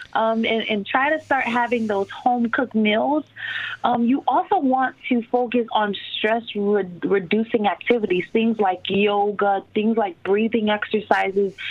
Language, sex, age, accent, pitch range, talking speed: English, female, 20-39, American, 200-245 Hz, 140 wpm